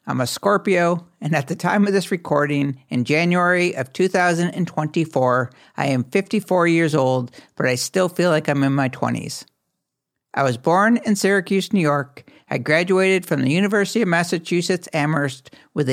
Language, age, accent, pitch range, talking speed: English, 60-79, American, 145-190 Hz, 165 wpm